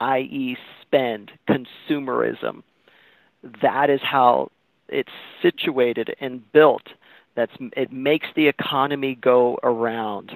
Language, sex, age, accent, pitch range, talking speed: English, male, 40-59, American, 125-150 Hz, 100 wpm